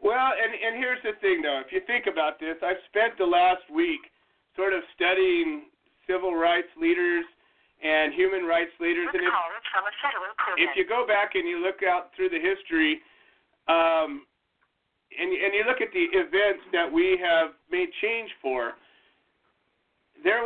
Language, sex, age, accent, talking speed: English, male, 40-59, American, 160 wpm